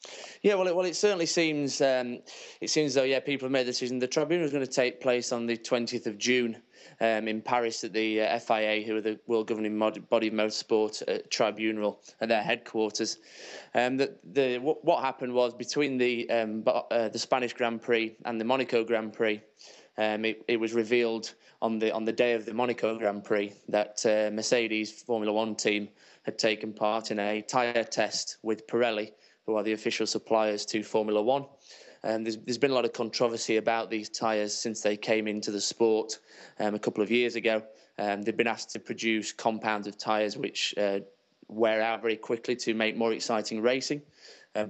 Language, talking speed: English, 200 wpm